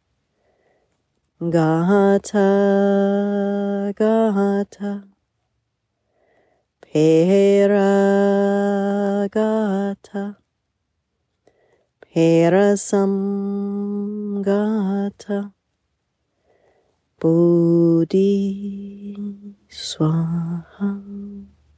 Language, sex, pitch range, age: English, female, 165-200 Hz, 30-49